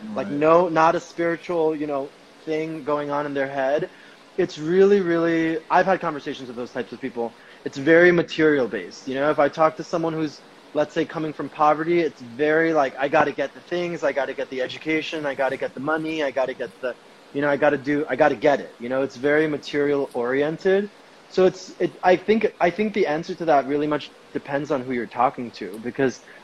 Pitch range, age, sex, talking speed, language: 135-160 Hz, 20-39, male, 220 wpm, English